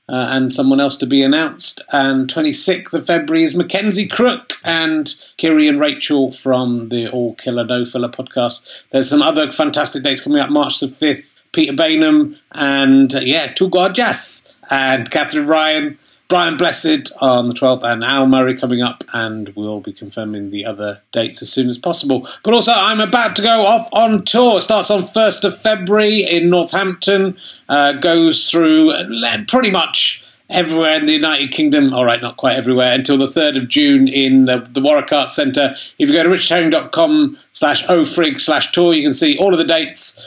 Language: English